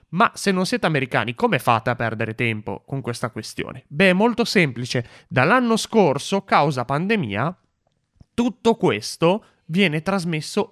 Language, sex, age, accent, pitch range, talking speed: Italian, male, 30-49, native, 115-175 Hz, 140 wpm